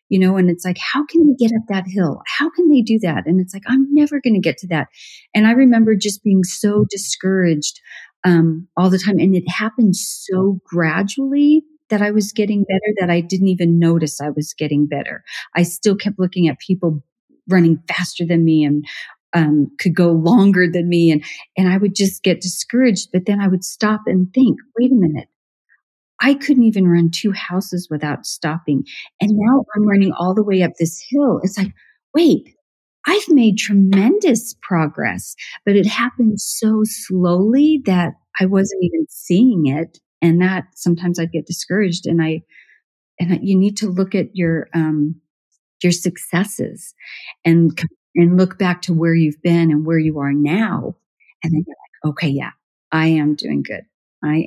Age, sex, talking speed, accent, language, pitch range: 40-59, female, 185 wpm, American, English, 165-210 Hz